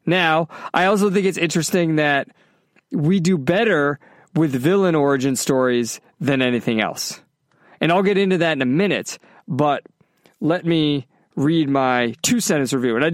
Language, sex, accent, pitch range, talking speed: English, male, American, 135-180 Hz, 155 wpm